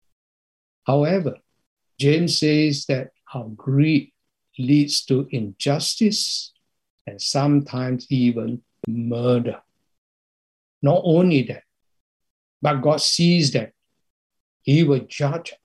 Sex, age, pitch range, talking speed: male, 60-79, 120-155 Hz, 90 wpm